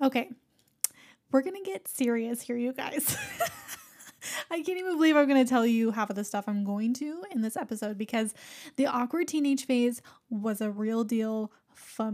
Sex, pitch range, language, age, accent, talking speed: female, 230-315 Hz, English, 10-29, American, 190 wpm